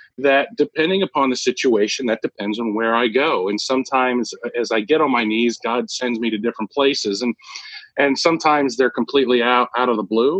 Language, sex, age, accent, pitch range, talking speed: English, male, 40-59, American, 105-130 Hz, 200 wpm